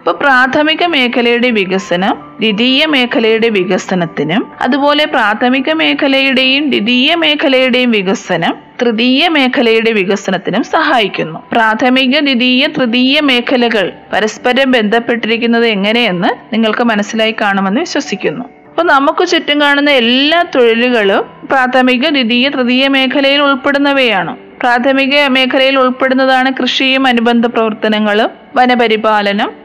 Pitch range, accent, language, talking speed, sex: 225-270 Hz, native, Malayalam, 95 wpm, female